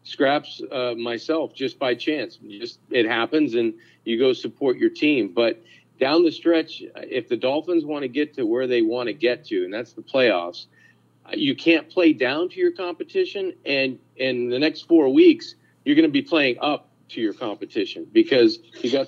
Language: English